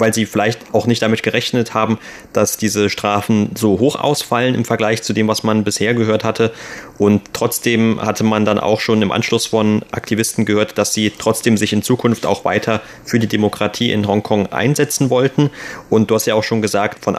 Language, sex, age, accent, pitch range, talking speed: German, male, 30-49, German, 105-115 Hz, 205 wpm